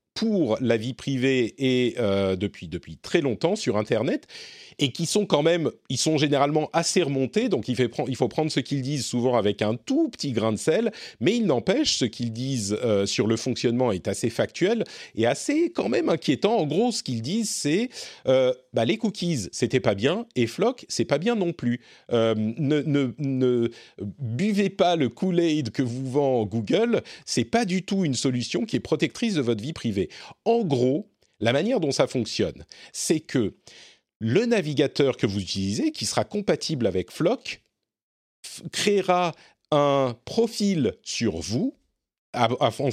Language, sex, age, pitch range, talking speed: French, male, 40-59, 120-190 Hz, 180 wpm